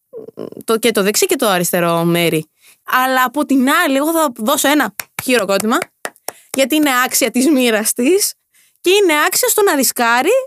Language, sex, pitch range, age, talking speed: Greek, female, 230-370 Hz, 20-39, 160 wpm